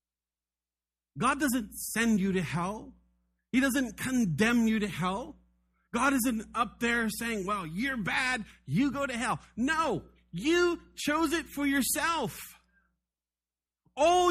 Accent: American